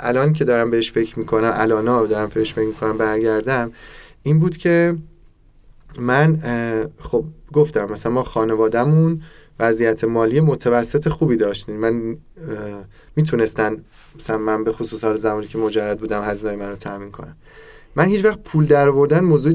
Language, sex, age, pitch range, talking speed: Persian, male, 20-39, 110-155 Hz, 145 wpm